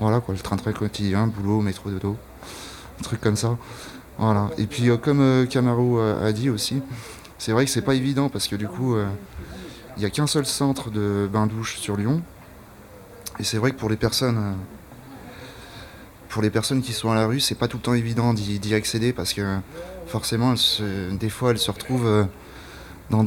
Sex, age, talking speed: male, 30-49, 195 wpm